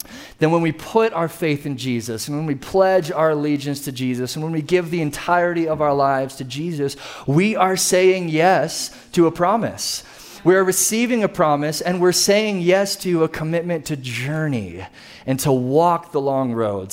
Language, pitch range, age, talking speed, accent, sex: English, 130-165 Hz, 30-49, 190 wpm, American, male